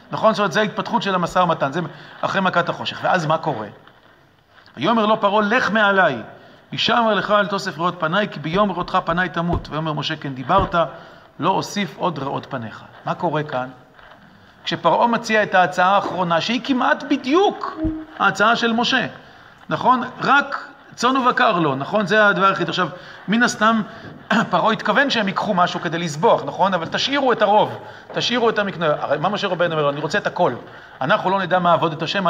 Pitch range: 170-230 Hz